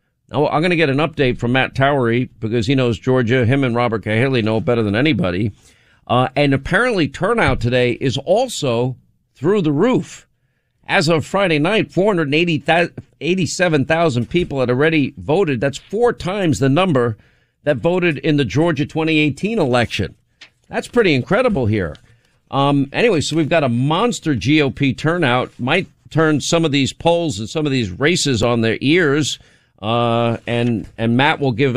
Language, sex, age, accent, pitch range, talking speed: English, male, 50-69, American, 120-150 Hz, 160 wpm